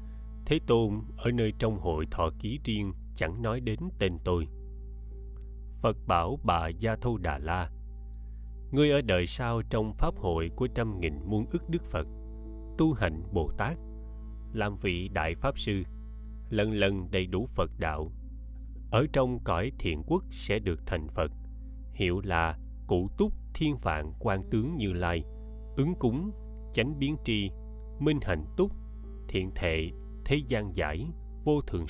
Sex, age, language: male, 20-39, Vietnamese